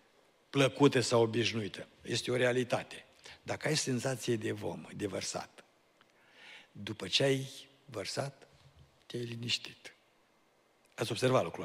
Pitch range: 115-150 Hz